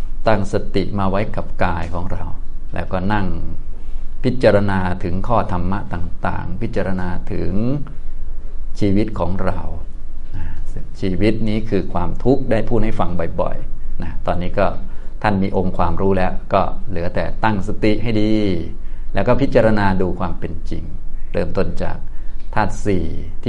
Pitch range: 85-105 Hz